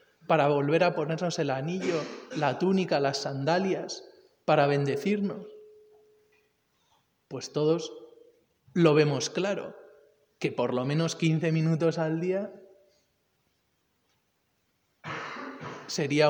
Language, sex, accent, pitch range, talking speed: Spanish, male, Spanish, 150-205 Hz, 95 wpm